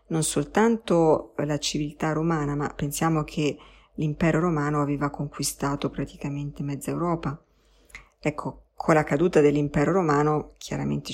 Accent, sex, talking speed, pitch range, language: native, female, 120 wpm, 145-170 Hz, Italian